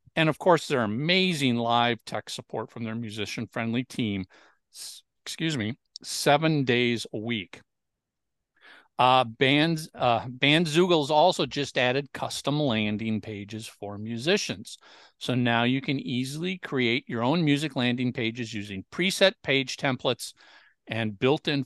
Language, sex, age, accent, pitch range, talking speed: English, male, 50-69, American, 115-150 Hz, 130 wpm